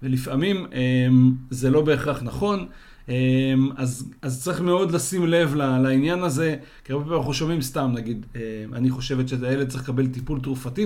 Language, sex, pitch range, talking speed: Hebrew, male, 130-165 Hz, 150 wpm